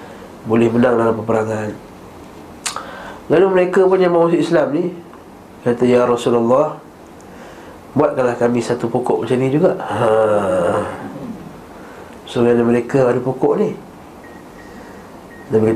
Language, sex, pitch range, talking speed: Malay, male, 115-145 Hz, 110 wpm